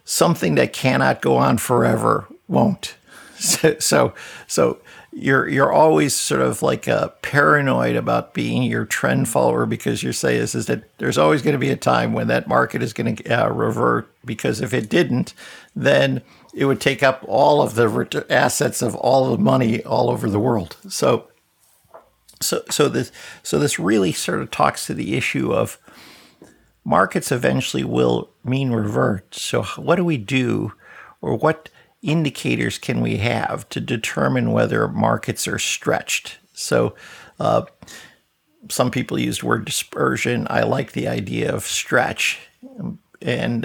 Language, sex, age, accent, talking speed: English, male, 50-69, American, 160 wpm